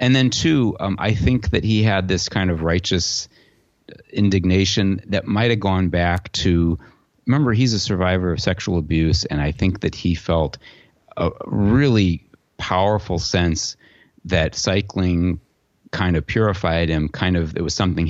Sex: male